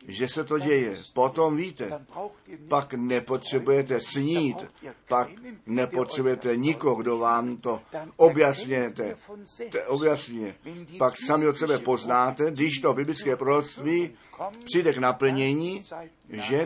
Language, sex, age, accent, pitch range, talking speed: Czech, male, 50-69, native, 125-160 Hz, 110 wpm